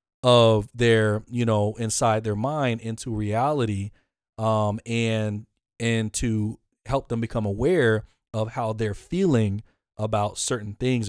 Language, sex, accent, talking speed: English, male, American, 130 wpm